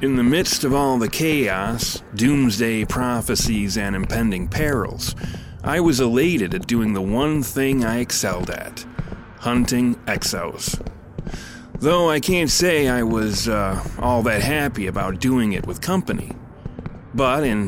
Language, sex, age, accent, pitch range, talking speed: English, male, 30-49, American, 105-135 Hz, 145 wpm